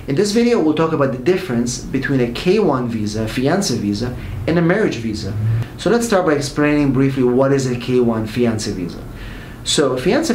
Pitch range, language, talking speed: 120-145 Hz, English, 195 wpm